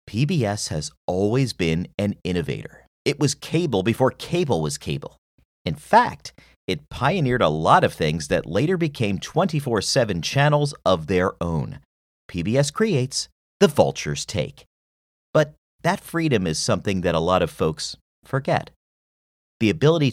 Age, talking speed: 40-59, 140 wpm